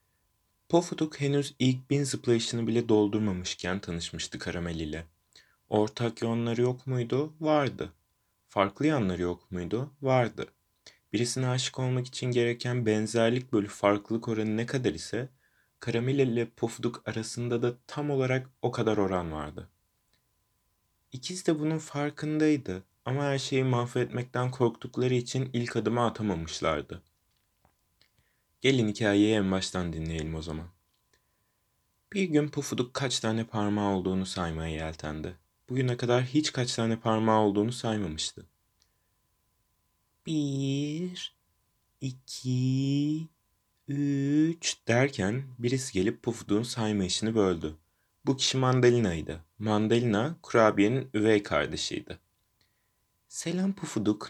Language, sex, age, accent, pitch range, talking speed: Turkish, male, 30-49, native, 100-130 Hz, 110 wpm